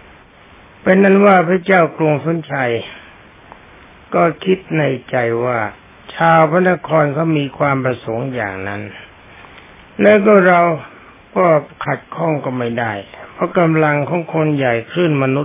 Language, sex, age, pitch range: Thai, male, 60-79, 125-175 Hz